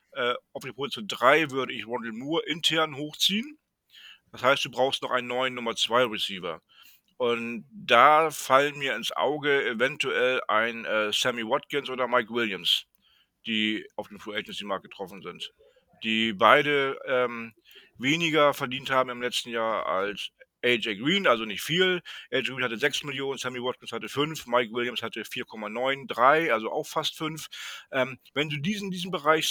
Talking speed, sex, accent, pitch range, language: 155 wpm, male, German, 120-150 Hz, German